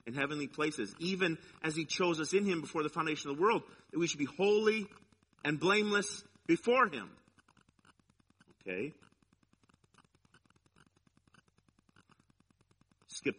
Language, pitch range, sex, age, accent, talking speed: English, 145-205 Hz, male, 40-59, American, 120 wpm